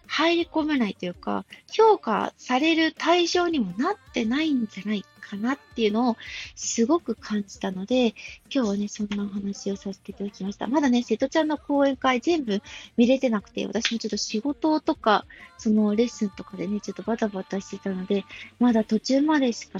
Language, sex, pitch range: Japanese, female, 205-275 Hz